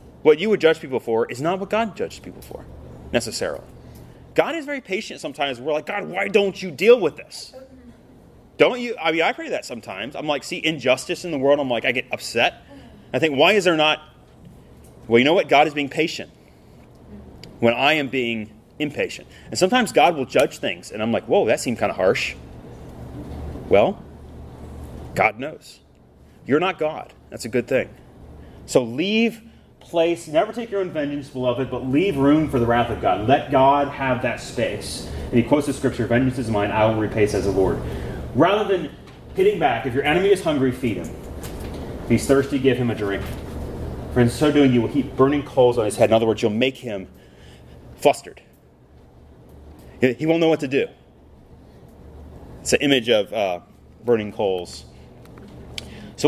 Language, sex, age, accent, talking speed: English, male, 30-49, American, 190 wpm